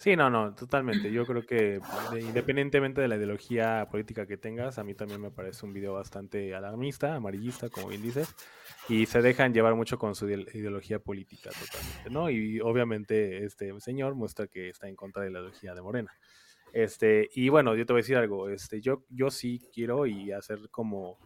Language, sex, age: Spanish, male, 20-39